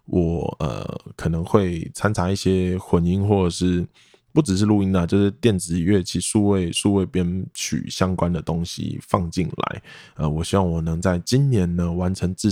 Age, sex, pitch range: 20-39, male, 85-110 Hz